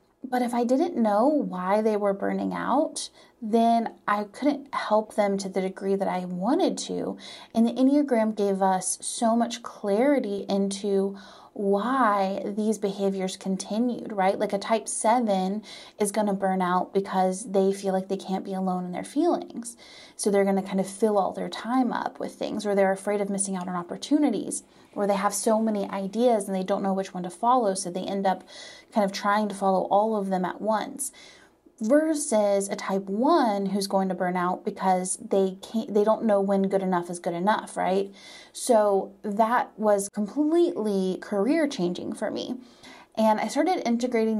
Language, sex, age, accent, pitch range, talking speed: English, female, 30-49, American, 195-230 Hz, 190 wpm